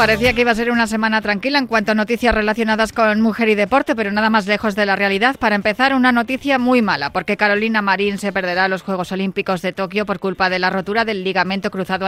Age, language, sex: 30-49, Spanish, female